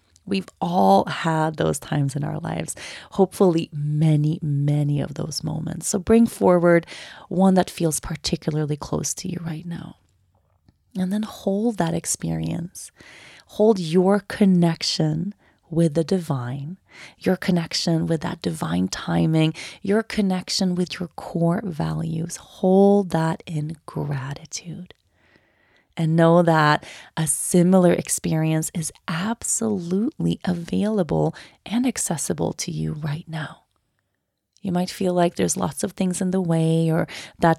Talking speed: 130 wpm